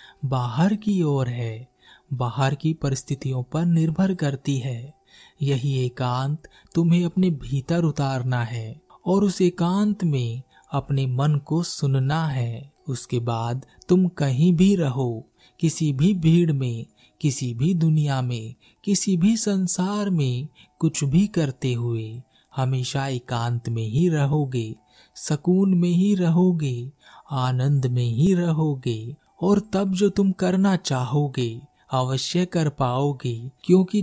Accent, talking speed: native, 125 wpm